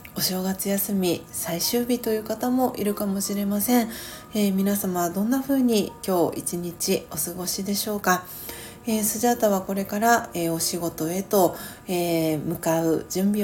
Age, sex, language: 40-59, female, Japanese